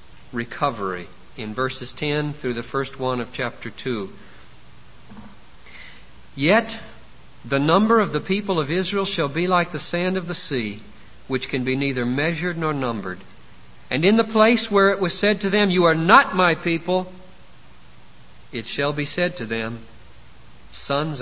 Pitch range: 120-195 Hz